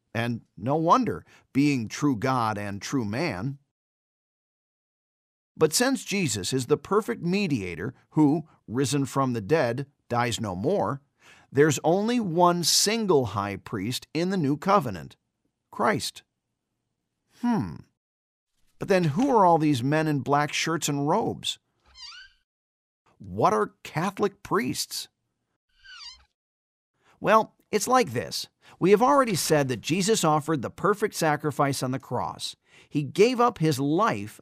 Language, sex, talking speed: English, male, 130 wpm